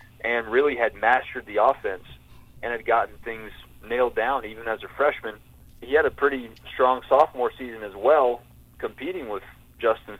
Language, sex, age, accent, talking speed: English, male, 30-49, American, 165 wpm